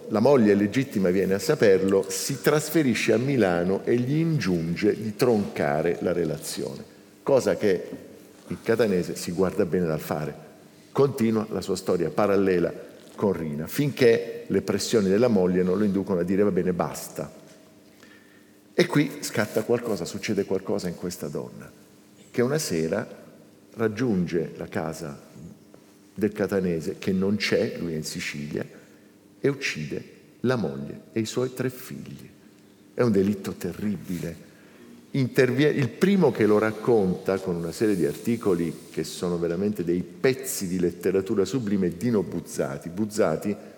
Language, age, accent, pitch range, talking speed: Italian, 50-69, native, 90-115 Hz, 145 wpm